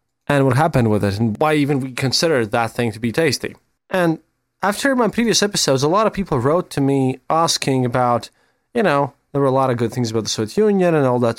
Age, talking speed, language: 20-39, 235 wpm, English